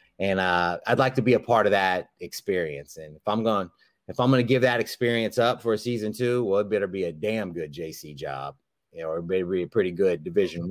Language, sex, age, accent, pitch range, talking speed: English, male, 30-49, American, 95-115 Hz, 235 wpm